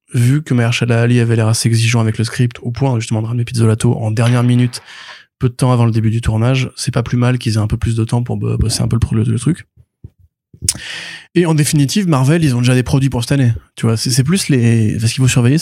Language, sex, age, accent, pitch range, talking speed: French, male, 20-39, French, 110-125 Hz, 265 wpm